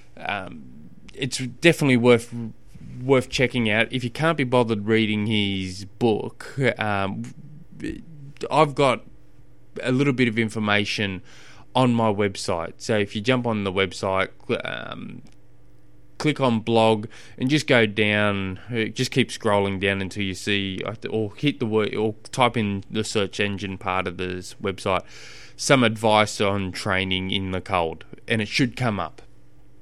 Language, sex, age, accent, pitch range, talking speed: English, male, 20-39, Australian, 100-120 Hz, 150 wpm